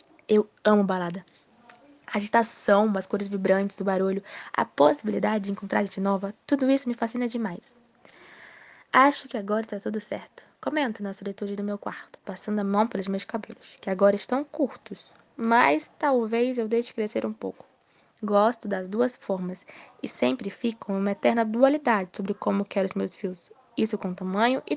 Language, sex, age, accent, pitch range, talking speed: Portuguese, female, 10-29, Brazilian, 200-245 Hz, 170 wpm